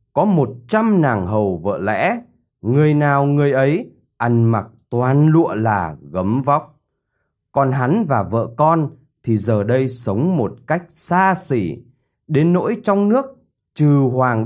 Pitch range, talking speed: 115-150 Hz, 155 wpm